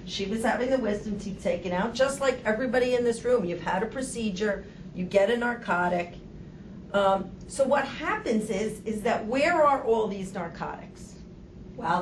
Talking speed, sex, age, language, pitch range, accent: 175 wpm, female, 40-59, English, 185-250 Hz, American